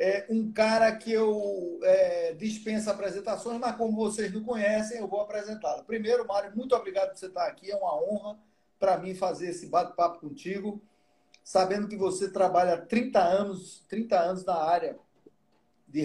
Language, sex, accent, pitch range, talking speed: Portuguese, male, Brazilian, 185-230 Hz, 155 wpm